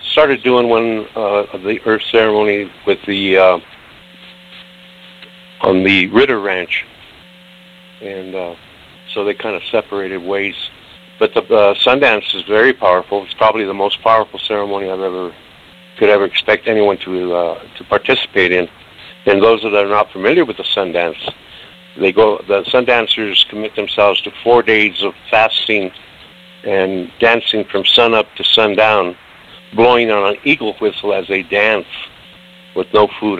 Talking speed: 155 wpm